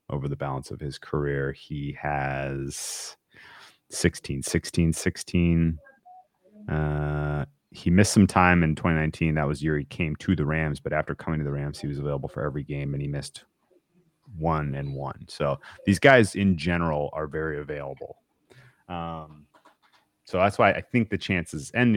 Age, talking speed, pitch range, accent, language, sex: 30-49, 165 wpm, 75-85 Hz, American, English, male